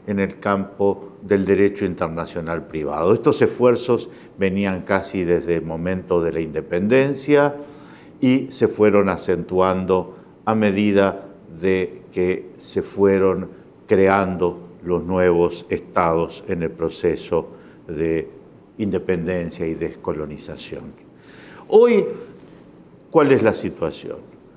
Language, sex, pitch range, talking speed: English, male, 95-130 Hz, 105 wpm